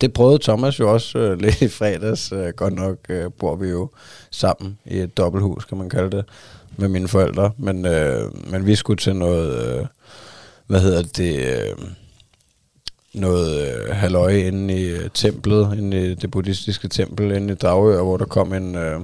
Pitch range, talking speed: 90-105 Hz, 170 wpm